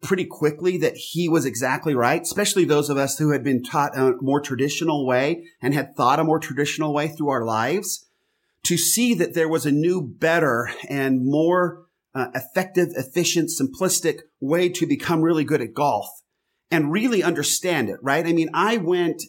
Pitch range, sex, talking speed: 135-170 Hz, male, 185 wpm